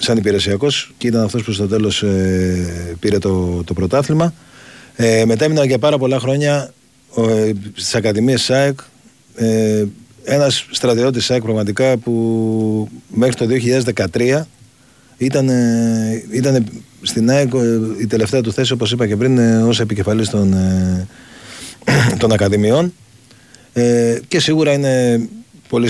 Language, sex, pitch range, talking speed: Greek, male, 105-130 Hz, 135 wpm